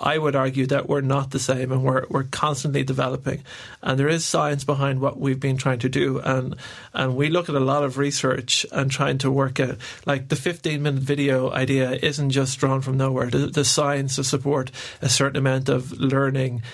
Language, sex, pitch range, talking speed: English, male, 130-140 Hz, 210 wpm